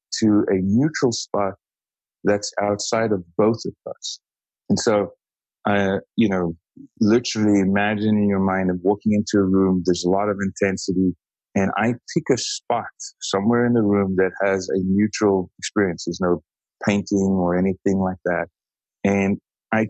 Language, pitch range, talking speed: English, 95-115 Hz, 160 wpm